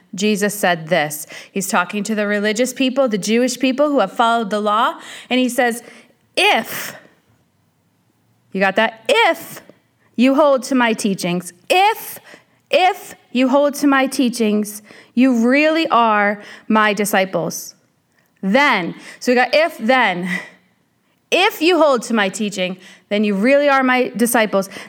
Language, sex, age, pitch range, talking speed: English, female, 30-49, 210-265 Hz, 145 wpm